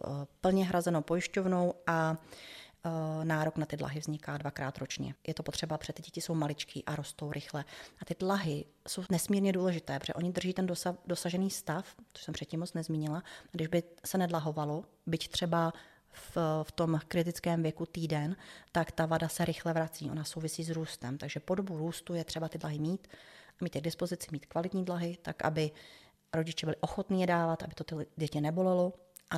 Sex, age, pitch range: female, 30-49, 160-180 Hz